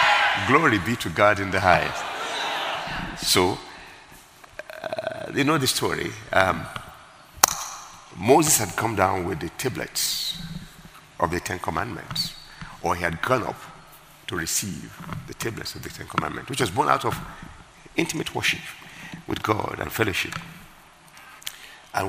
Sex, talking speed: male, 135 wpm